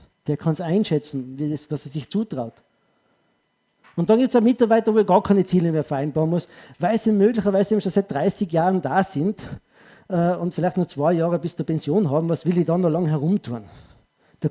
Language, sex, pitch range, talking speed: German, male, 145-185 Hz, 210 wpm